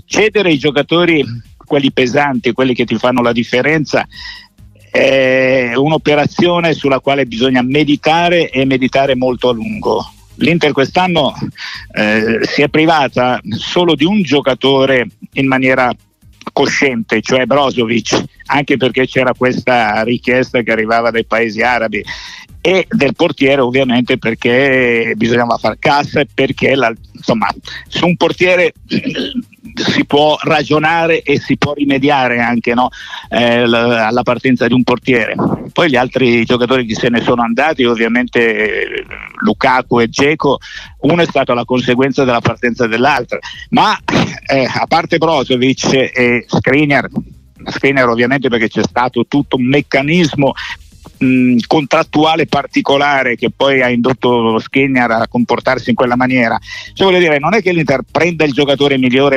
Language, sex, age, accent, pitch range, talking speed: Italian, male, 60-79, native, 120-145 Hz, 135 wpm